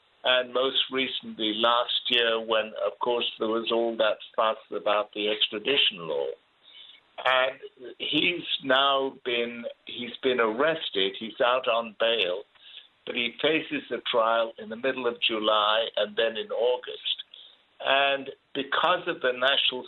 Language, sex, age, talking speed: English, male, 60-79, 140 wpm